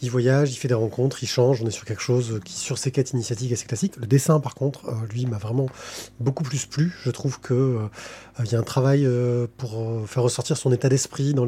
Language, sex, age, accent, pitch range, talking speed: French, male, 20-39, French, 125-150 Hz, 250 wpm